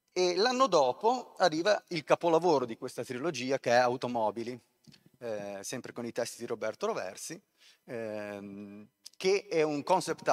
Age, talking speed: 30-49, 145 wpm